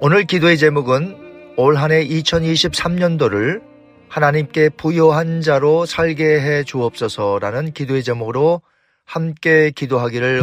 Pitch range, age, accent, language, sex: 125-160 Hz, 40-59, native, Korean, male